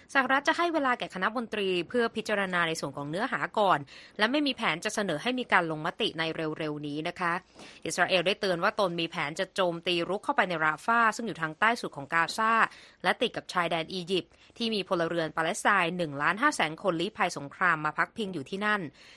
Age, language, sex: 20-39, Thai, female